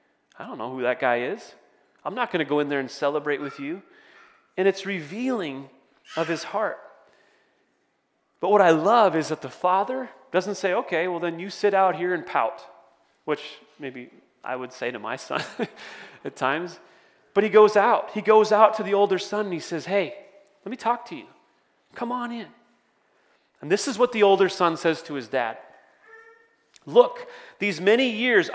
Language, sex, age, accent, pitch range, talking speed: English, male, 30-49, American, 165-250 Hz, 190 wpm